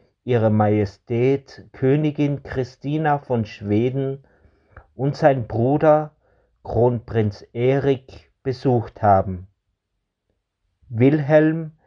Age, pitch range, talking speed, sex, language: 50-69, 105-135 Hz, 70 wpm, male, German